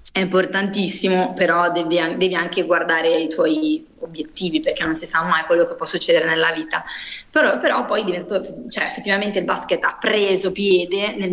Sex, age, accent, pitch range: female, 20-39, native, 165-190 Hz